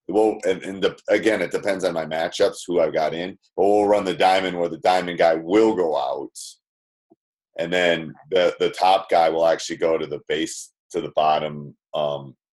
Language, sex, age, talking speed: English, male, 40-59, 200 wpm